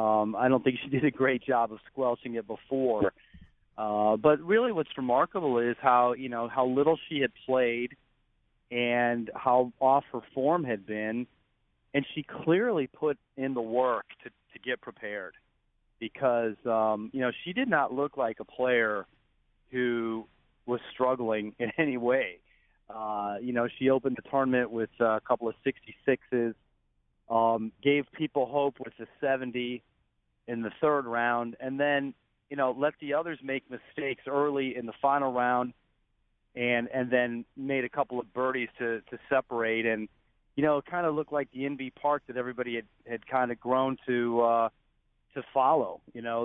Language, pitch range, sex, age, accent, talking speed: English, 115-135 Hz, male, 40-59, American, 175 wpm